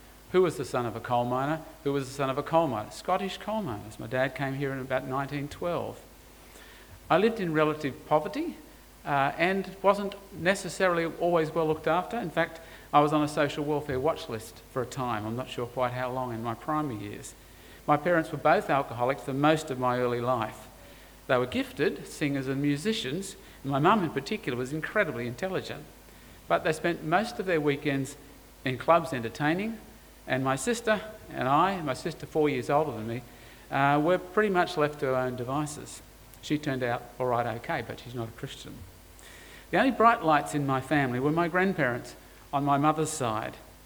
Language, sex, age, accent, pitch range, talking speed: English, male, 50-69, Australian, 130-170 Hz, 195 wpm